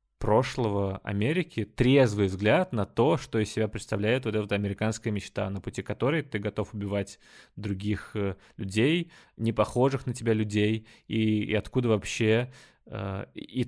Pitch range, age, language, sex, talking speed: 100-115 Hz, 20-39, Russian, male, 145 wpm